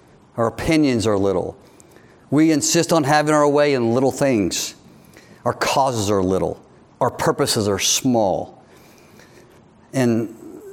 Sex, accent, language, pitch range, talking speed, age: male, American, English, 135-210 Hz, 125 wpm, 50-69